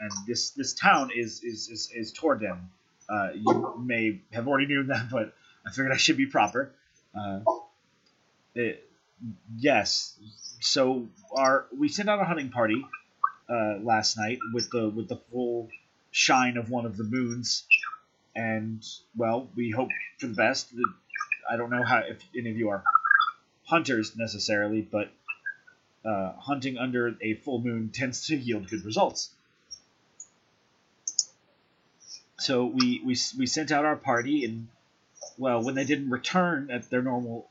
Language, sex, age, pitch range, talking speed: English, male, 30-49, 110-140 Hz, 150 wpm